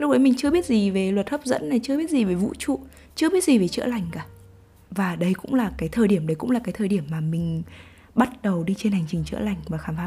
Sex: female